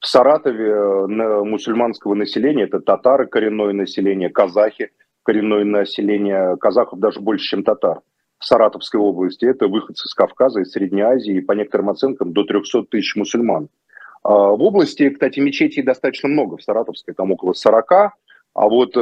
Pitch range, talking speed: 100-125 Hz, 150 wpm